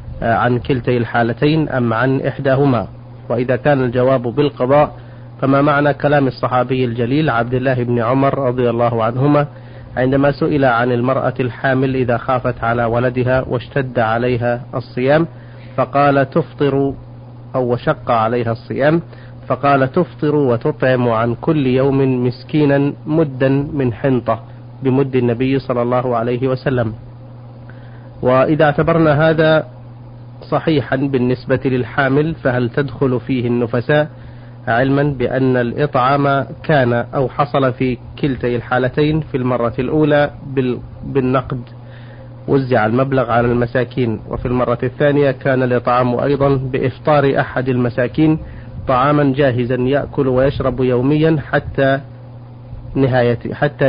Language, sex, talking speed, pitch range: Arabic, male, 110 wpm, 120-140 Hz